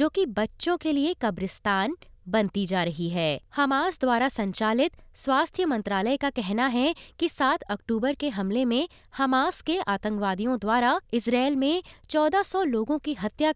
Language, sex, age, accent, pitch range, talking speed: Hindi, female, 20-39, native, 220-315 Hz, 150 wpm